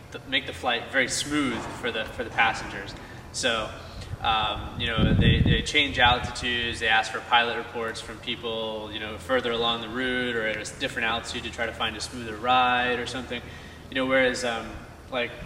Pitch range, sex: 110-125 Hz, male